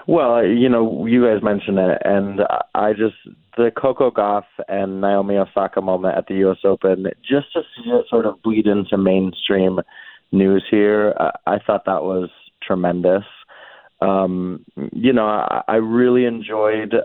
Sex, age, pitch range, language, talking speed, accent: male, 20-39, 95-115 Hz, English, 150 wpm, American